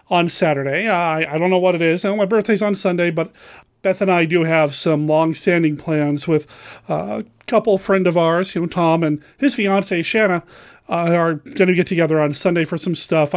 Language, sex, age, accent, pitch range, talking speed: English, male, 30-49, American, 165-230 Hz, 215 wpm